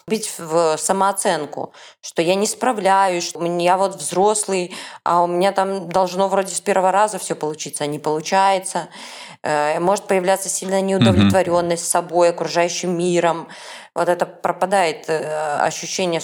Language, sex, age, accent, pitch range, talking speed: Russian, female, 20-39, native, 160-195 Hz, 135 wpm